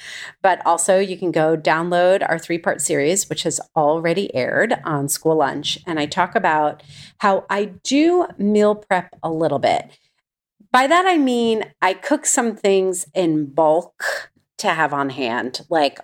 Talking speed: 160 wpm